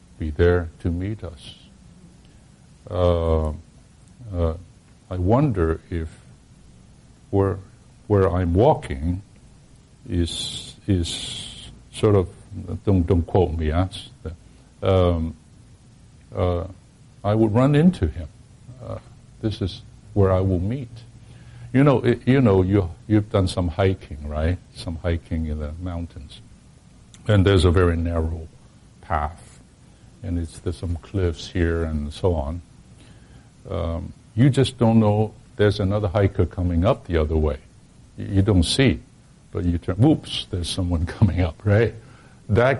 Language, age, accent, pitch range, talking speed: English, 60-79, American, 85-115 Hz, 130 wpm